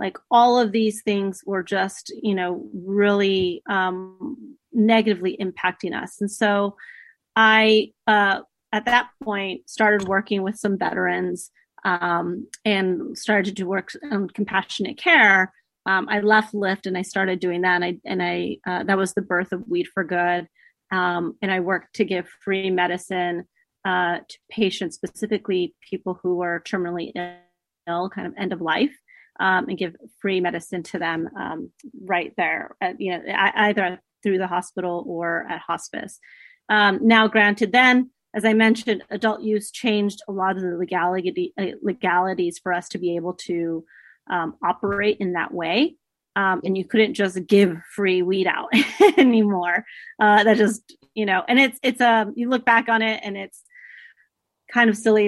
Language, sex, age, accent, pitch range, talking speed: English, female, 30-49, American, 180-220 Hz, 165 wpm